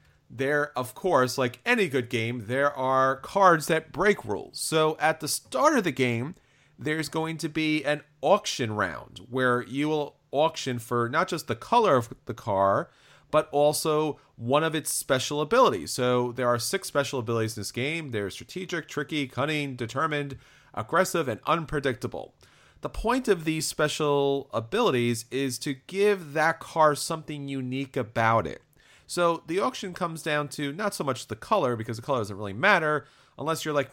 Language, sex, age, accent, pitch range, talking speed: English, male, 40-59, American, 125-155 Hz, 175 wpm